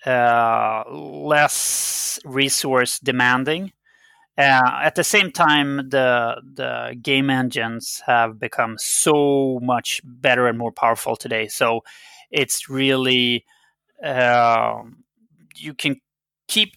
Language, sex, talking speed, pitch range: English, male, 105 wpm, 125-165 Hz